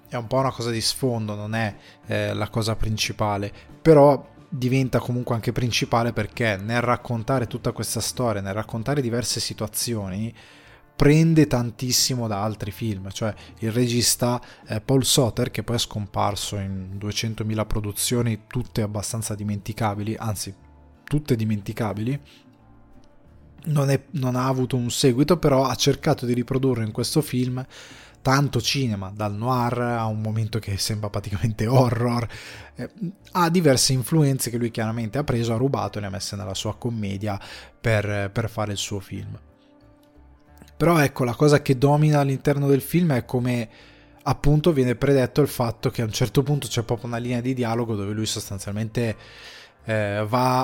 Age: 20-39